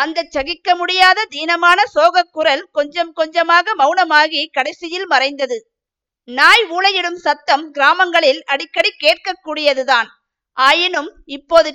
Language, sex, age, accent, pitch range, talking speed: Tamil, female, 50-69, native, 290-360 Hz, 95 wpm